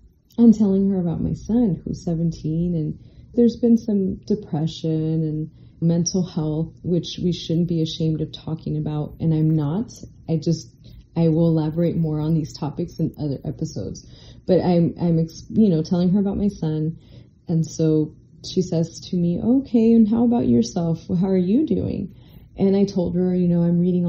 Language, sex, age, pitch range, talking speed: English, female, 30-49, 155-185 Hz, 180 wpm